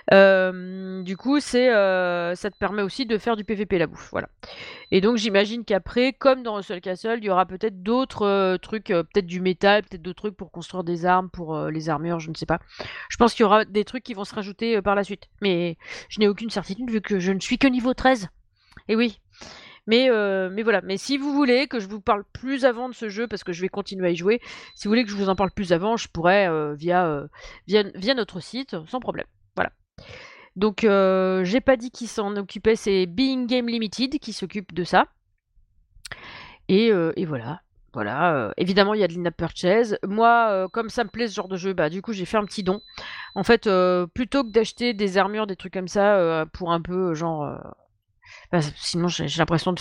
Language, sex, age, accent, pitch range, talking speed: French, female, 30-49, French, 175-225 Hz, 235 wpm